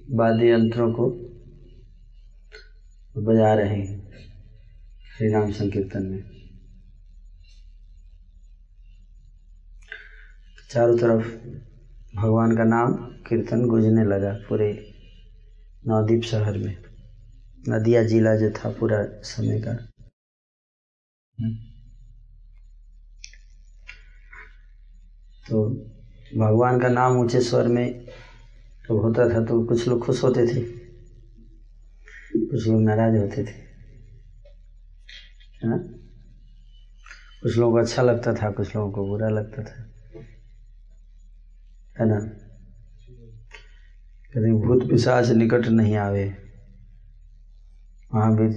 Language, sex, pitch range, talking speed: Hindi, male, 100-120 Hz, 85 wpm